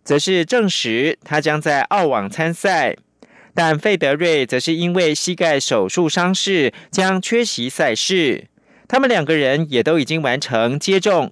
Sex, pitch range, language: male, 135-195 Hz, Chinese